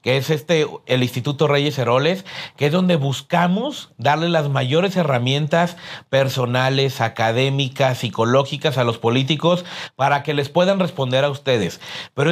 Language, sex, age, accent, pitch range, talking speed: Spanish, male, 40-59, Mexican, 135-175 Hz, 140 wpm